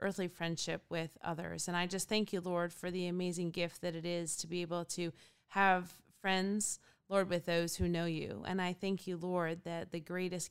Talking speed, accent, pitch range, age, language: 210 wpm, American, 170-190 Hz, 30-49, English